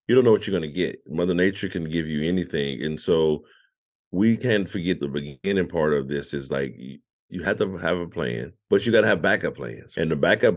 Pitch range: 75-90 Hz